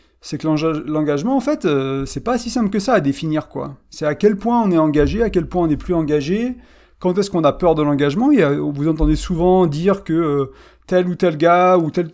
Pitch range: 150-195 Hz